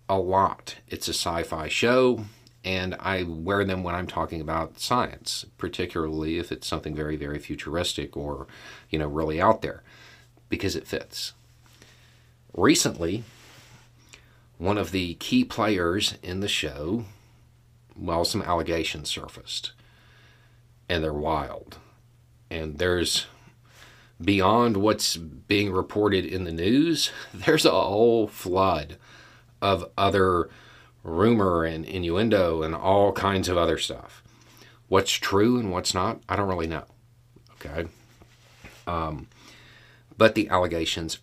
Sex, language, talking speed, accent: male, English, 125 wpm, American